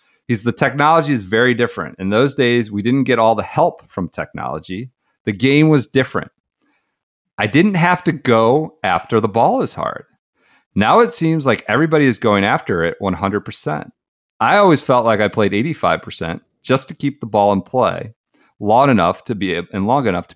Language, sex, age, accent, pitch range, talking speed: English, male, 40-59, American, 105-145 Hz, 185 wpm